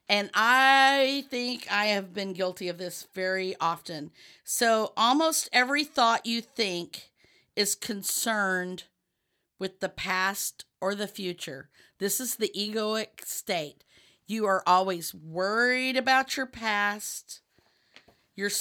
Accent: American